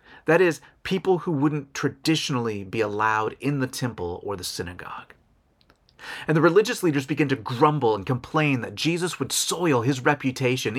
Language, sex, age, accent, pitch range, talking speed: English, male, 30-49, American, 135-180 Hz, 160 wpm